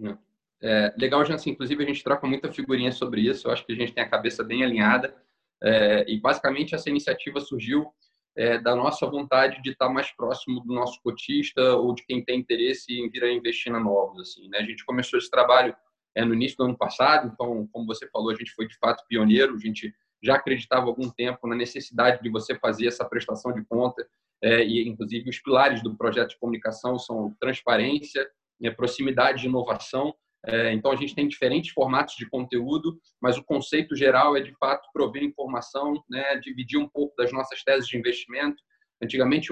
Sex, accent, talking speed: male, Brazilian, 195 wpm